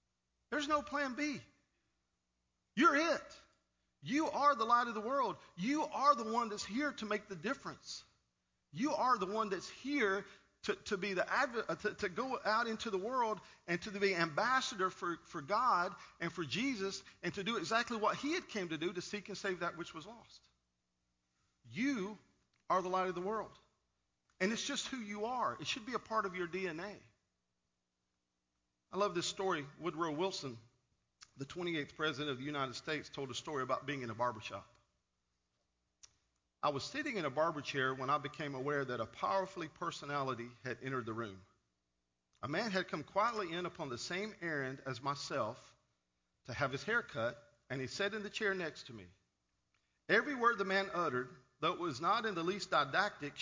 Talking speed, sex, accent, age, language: 190 wpm, male, American, 50-69, English